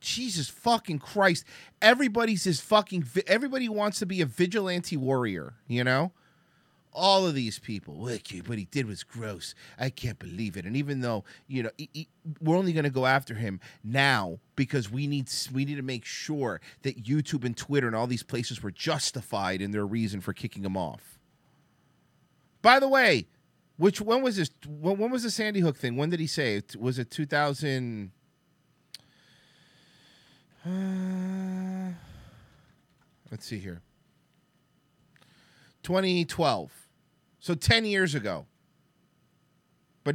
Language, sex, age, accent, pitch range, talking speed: English, male, 30-49, American, 120-180 Hz, 150 wpm